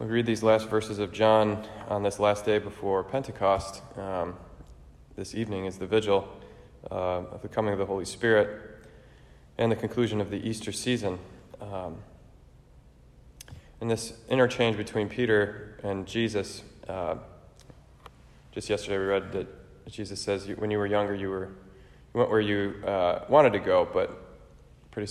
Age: 20-39